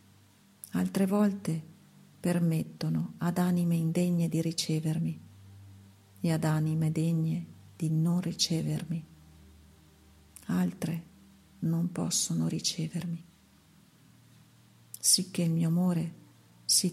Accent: native